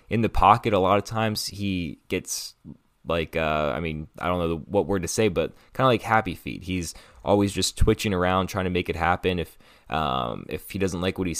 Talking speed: 230 wpm